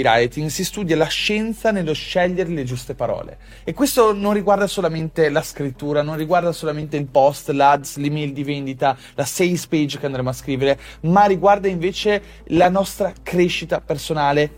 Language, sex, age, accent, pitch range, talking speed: Italian, male, 30-49, native, 150-190 Hz, 165 wpm